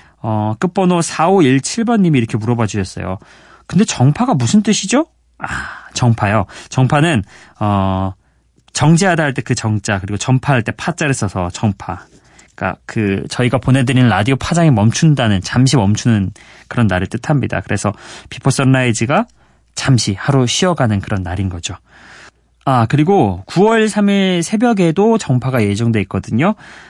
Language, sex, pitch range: Korean, male, 105-165 Hz